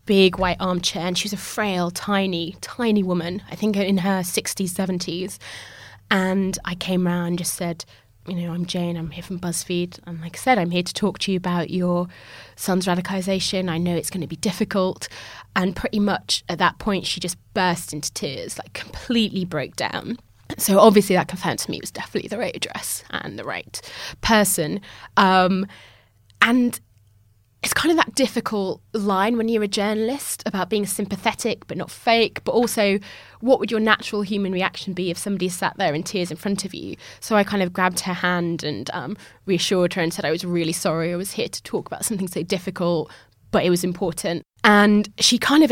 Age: 20-39